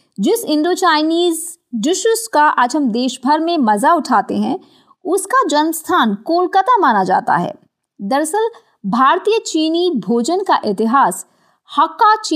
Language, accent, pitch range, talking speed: Hindi, native, 240-350 Hz, 115 wpm